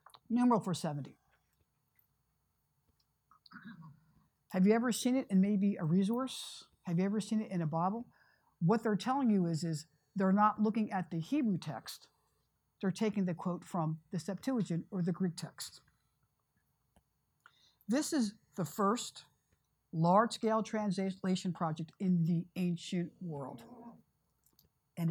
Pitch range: 170-220 Hz